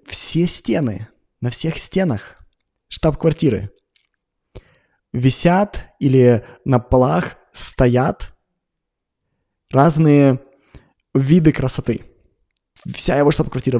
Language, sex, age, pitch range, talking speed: Russian, male, 20-39, 125-170 Hz, 75 wpm